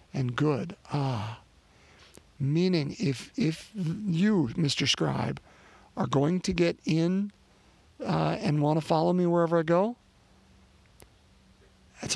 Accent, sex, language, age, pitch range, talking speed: American, male, English, 50-69, 125-185 Hz, 125 wpm